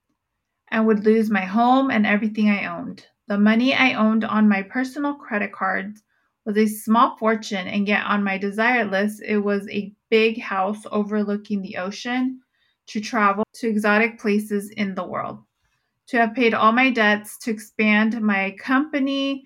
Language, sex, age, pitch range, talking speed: English, female, 20-39, 200-230 Hz, 165 wpm